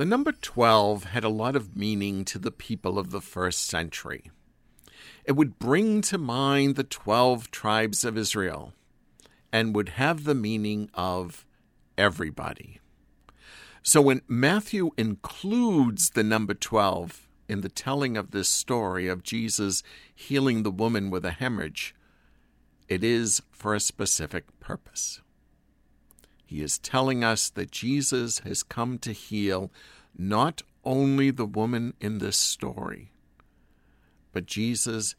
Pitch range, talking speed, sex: 90-120 Hz, 135 wpm, male